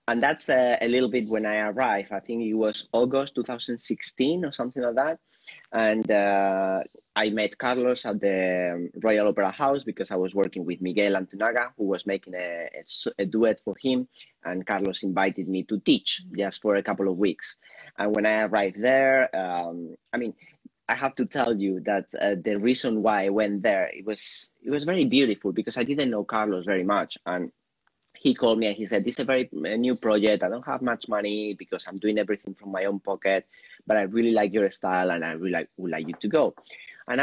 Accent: Spanish